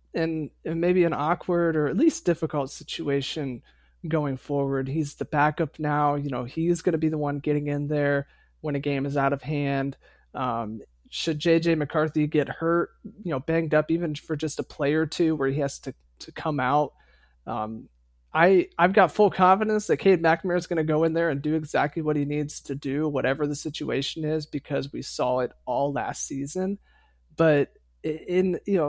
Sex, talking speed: male, 195 wpm